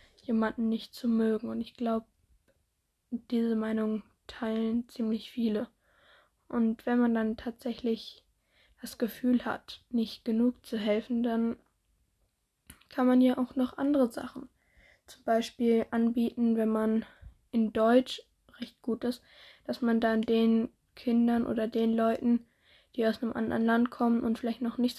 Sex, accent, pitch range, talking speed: female, German, 225-245 Hz, 145 wpm